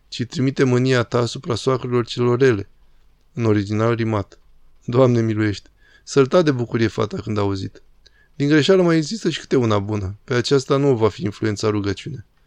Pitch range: 115-135 Hz